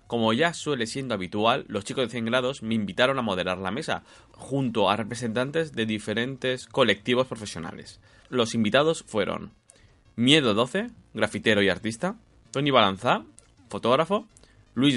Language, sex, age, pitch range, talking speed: Spanish, male, 20-39, 95-115 Hz, 140 wpm